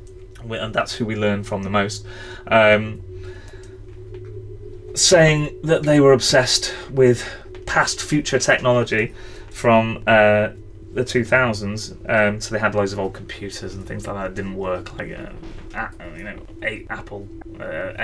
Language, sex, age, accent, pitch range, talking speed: English, male, 20-39, British, 95-120 Hz, 150 wpm